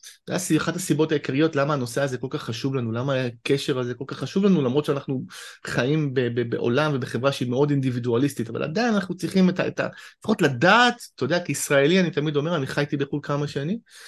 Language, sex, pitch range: Hebrew, male, 140-190 Hz